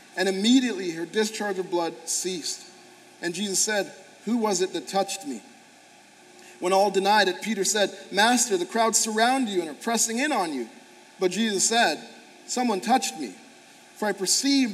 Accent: American